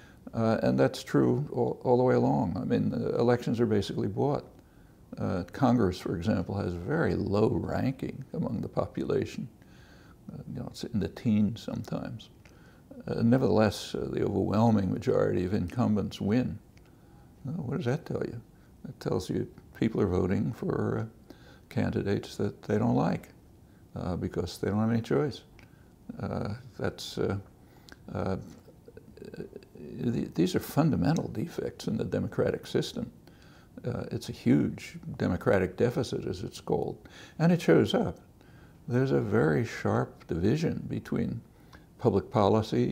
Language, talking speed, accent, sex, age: English, 140 wpm, American, male, 60-79